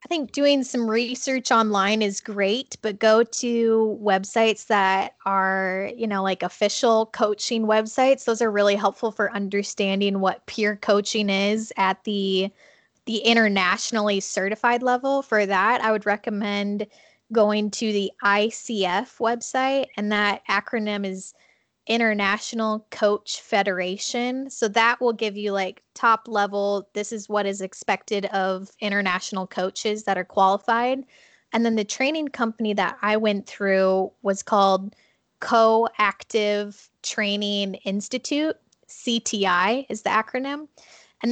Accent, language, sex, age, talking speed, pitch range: American, English, female, 10-29, 130 wpm, 200-230 Hz